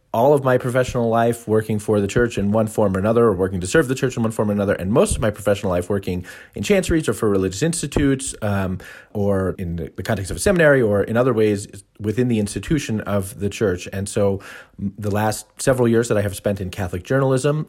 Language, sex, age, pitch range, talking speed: English, male, 30-49, 95-110 Hz, 235 wpm